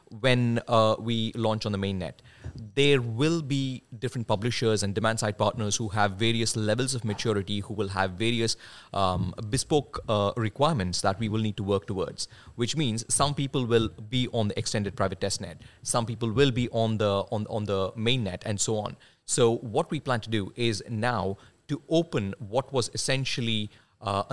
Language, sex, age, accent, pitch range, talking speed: English, male, 30-49, Indian, 105-135 Hz, 185 wpm